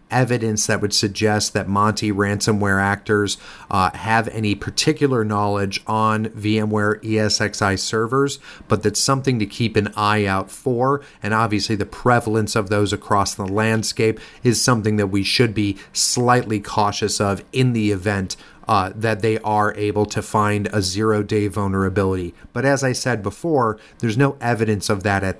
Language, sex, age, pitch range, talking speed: English, male, 30-49, 105-120 Hz, 160 wpm